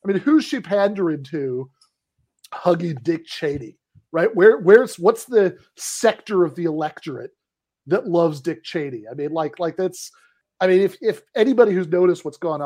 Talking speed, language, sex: 170 wpm, English, male